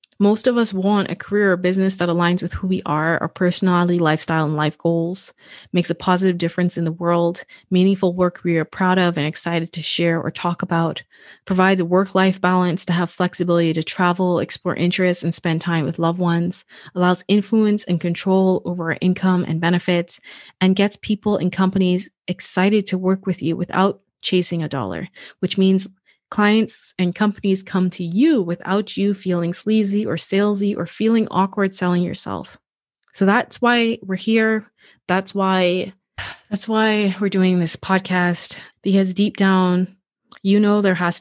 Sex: female